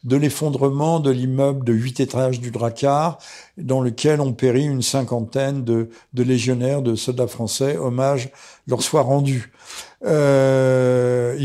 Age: 50-69